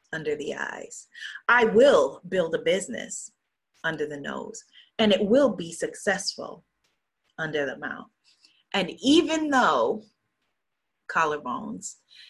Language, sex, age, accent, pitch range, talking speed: English, female, 30-49, American, 160-240 Hz, 110 wpm